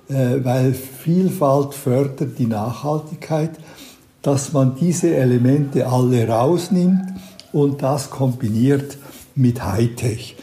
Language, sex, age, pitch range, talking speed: German, male, 60-79, 125-145 Hz, 90 wpm